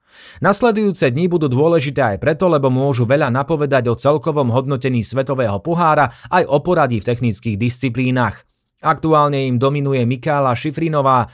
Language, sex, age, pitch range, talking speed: Slovak, male, 30-49, 120-150 Hz, 140 wpm